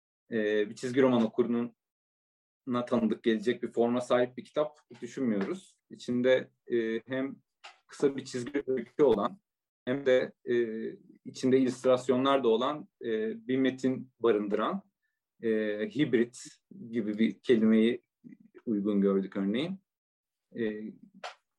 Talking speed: 115 wpm